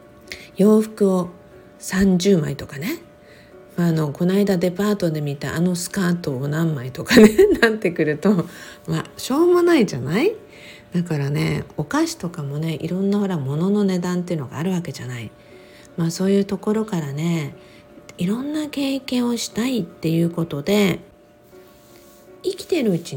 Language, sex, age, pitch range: Japanese, female, 50-69, 160-215 Hz